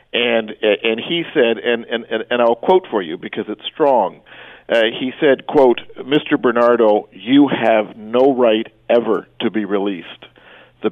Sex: male